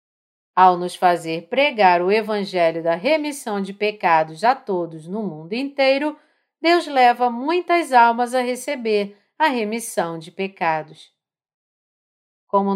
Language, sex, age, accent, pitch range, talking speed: Portuguese, female, 40-59, Brazilian, 190-285 Hz, 120 wpm